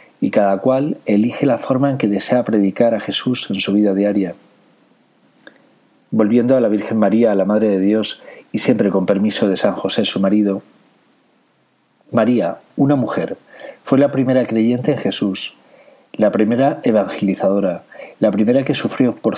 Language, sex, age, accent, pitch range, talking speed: Spanish, male, 40-59, Spanish, 100-125 Hz, 160 wpm